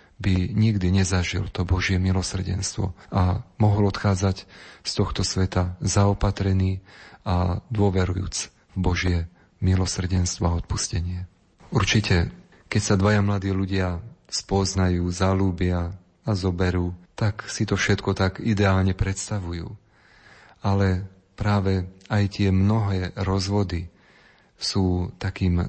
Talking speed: 105 wpm